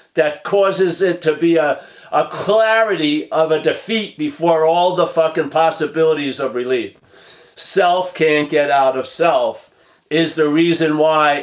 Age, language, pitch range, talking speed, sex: 50-69, English, 155-195 Hz, 145 wpm, male